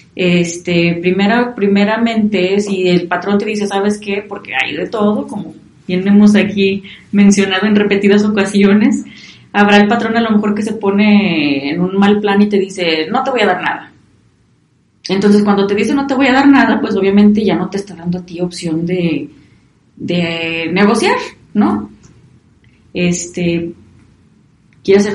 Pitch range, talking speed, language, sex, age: 175-225 Hz, 165 wpm, Spanish, female, 30-49